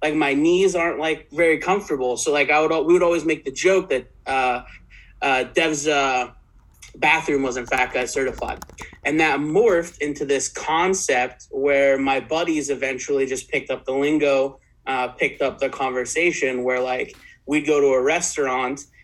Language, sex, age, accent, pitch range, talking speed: English, male, 30-49, American, 130-160 Hz, 170 wpm